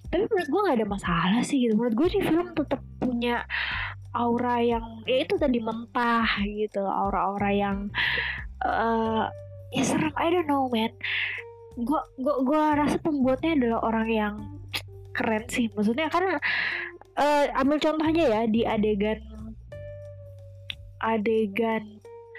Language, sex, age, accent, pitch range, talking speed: Indonesian, female, 20-39, native, 205-275 Hz, 130 wpm